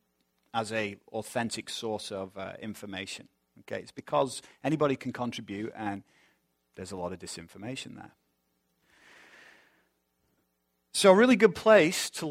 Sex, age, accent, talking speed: male, 40-59, British, 125 wpm